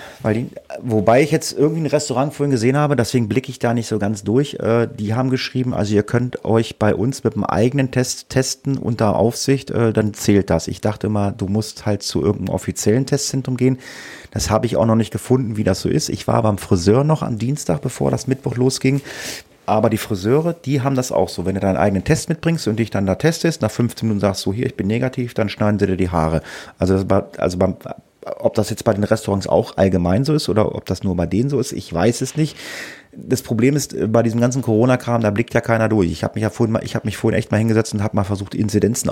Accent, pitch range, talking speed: German, 105-130 Hz, 245 wpm